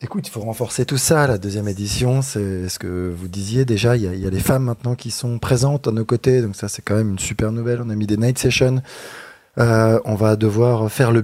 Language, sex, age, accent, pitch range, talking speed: French, male, 20-39, French, 110-130 Hz, 260 wpm